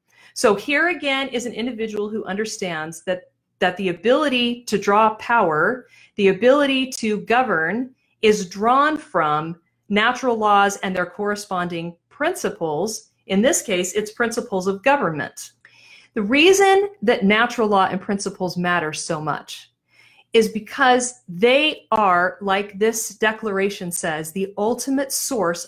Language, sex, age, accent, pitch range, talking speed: English, female, 40-59, American, 195-255 Hz, 130 wpm